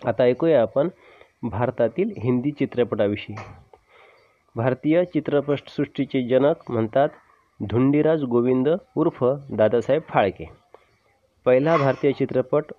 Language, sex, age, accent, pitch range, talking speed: Marathi, male, 30-49, native, 120-145 Hz, 85 wpm